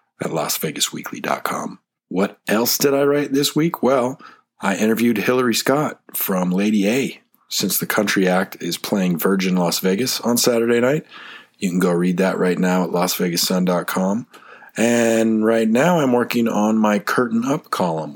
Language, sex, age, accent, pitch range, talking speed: English, male, 40-59, American, 90-115 Hz, 160 wpm